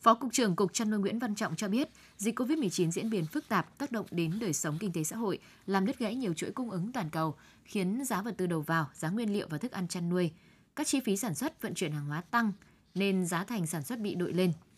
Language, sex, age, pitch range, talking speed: Vietnamese, female, 10-29, 165-220 Hz, 280 wpm